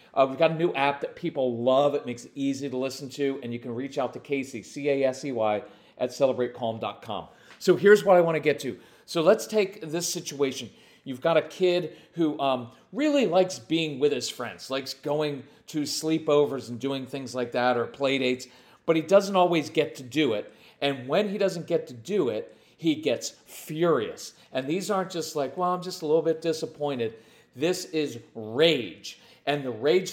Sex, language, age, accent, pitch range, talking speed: male, English, 40-59, American, 140-200 Hz, 200 wpm